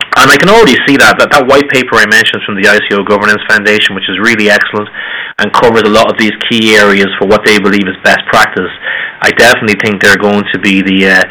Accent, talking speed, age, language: Irish, 240 wpm, 30-49, English